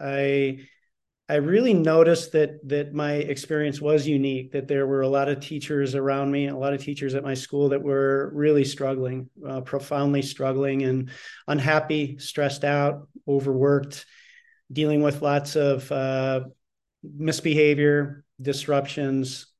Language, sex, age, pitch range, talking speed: English, male, 40-59, 135-150 Hz, 140 wpm